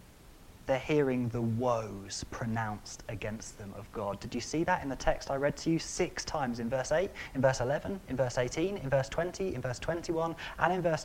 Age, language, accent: 30-49, English, British